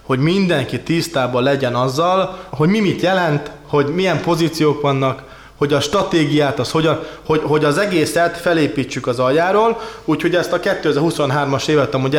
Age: 20-39